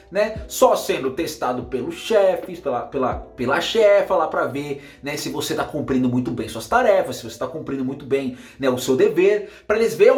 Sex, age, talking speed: male, 30-49, 200 wpm